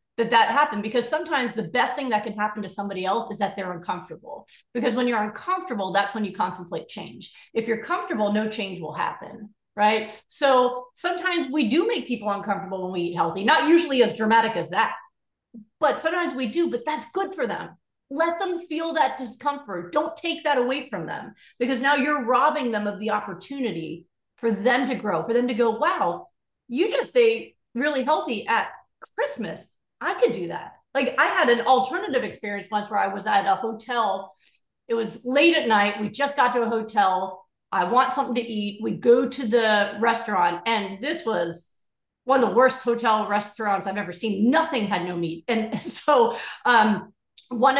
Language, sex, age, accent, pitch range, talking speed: English, female, 30-49, American, 210-275 Hz, 195 wpm